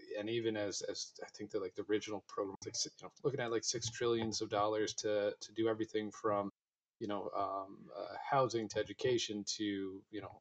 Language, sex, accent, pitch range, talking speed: English, male, American, 105-115 Hz, 210 wpm